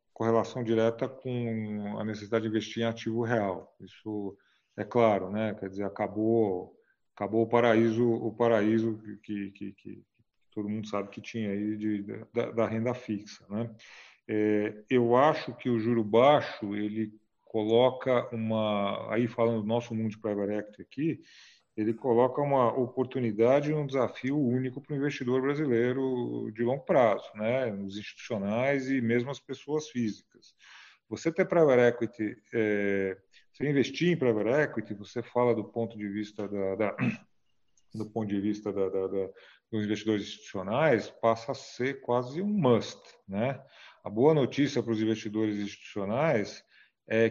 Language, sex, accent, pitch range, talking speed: Portuguese, male, Brazilian, 105-125 Hz, 155 wpm